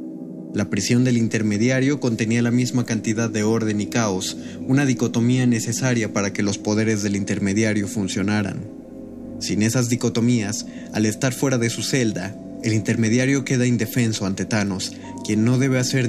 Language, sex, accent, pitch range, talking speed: Spanish, male, Mexican, 105-120 Hz, 155 wpm